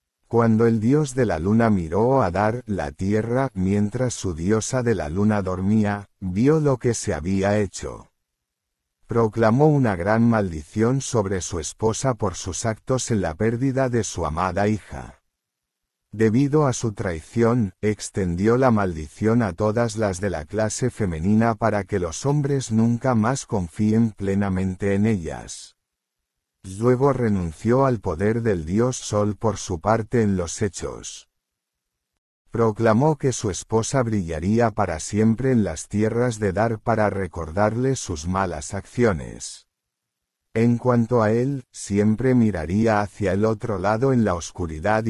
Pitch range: 95-115 Hz